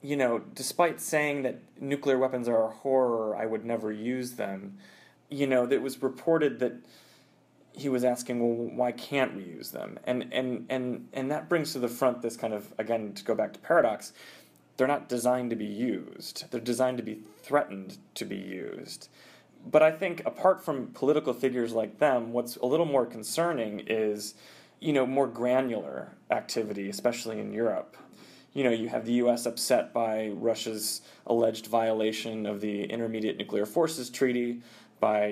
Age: 20-39